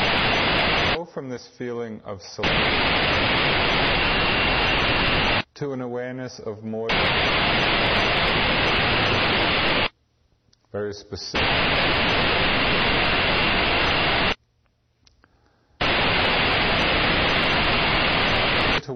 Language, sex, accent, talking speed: English, male, American, 40 wpm